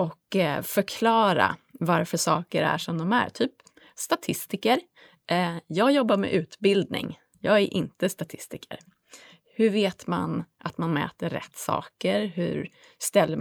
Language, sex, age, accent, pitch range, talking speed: Swedish, female, 30-49, native, 175-235 Hz, 125 wpm